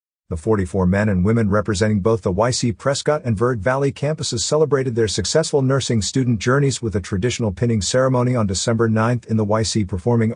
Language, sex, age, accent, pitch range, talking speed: English, male, 50-69, American, 100-135 Hz, 185 wpm